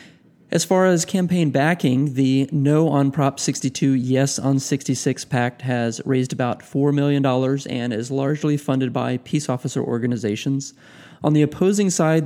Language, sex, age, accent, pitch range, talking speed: English, male, 30-49, American, 120-145 Hz, 150 wpm